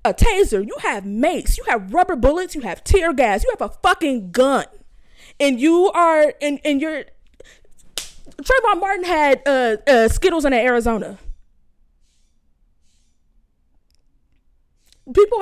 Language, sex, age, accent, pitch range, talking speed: English, female, 20-39, American, 200-290 Hz, 130 wpm